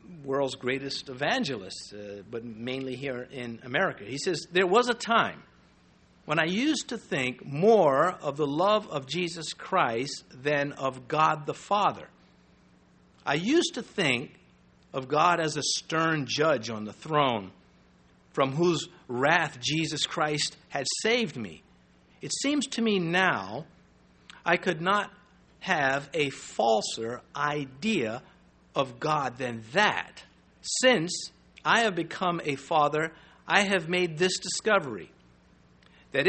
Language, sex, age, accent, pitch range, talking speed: English, male, 50-69, American, 125-180 Hz, 135 wpm